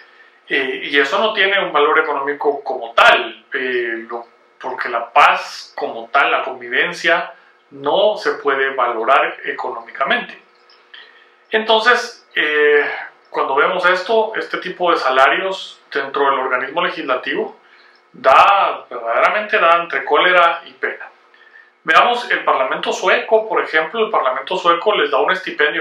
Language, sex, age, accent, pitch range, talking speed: Spanish, male, 40-59, Mexican, 150-225 Hz, 135 wpm